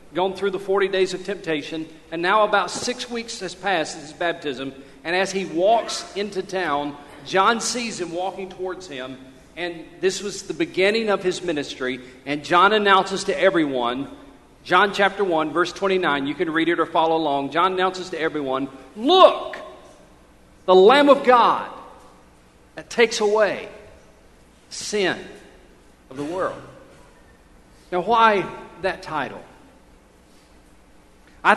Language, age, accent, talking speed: English, 40-59, American, 145 wpm